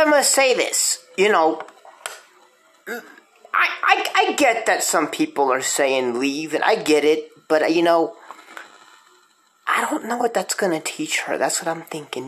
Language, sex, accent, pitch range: English, male, American, 160-240 Hz